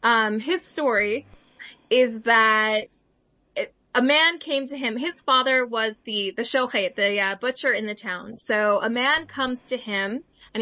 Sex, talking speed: female, 170 wpm